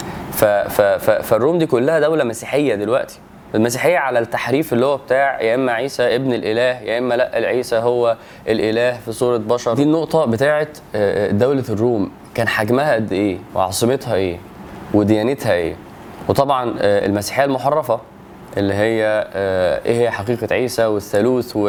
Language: Arabic